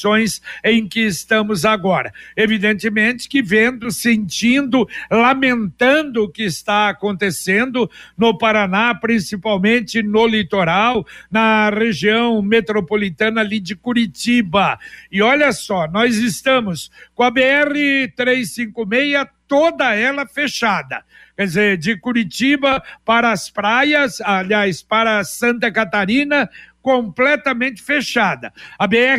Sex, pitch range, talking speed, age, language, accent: male, 215-255 Hz, 105 wpm, 60-79, Portuguese, Brazilian